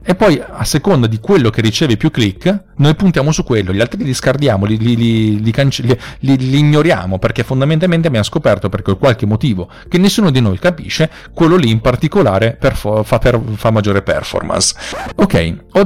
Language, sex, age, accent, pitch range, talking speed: Italian, male, 40-59, native, 110-150 Hz, 195 wpm